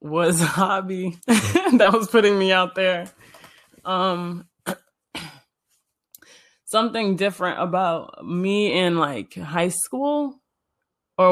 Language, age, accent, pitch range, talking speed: English, 20-39, American, 170-220 Hz, 100 wpm